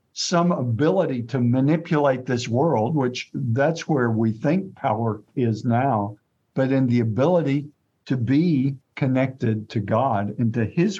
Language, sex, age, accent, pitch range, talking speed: English, male, 50-69, American, 120-150 Hz, 140 wpm